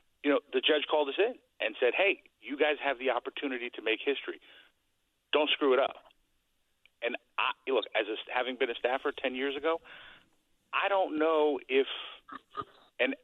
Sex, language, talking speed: male, English, 175 wpm